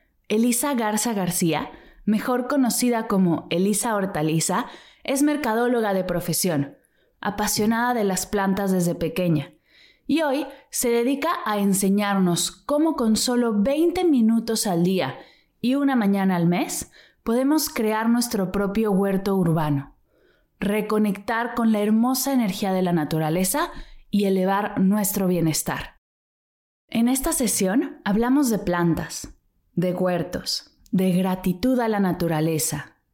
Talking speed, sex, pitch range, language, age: 120 wpm, female, 185-245 Hz, Spanish, 20-39